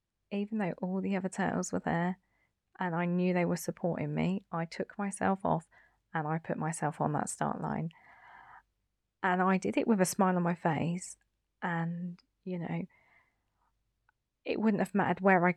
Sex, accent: female, British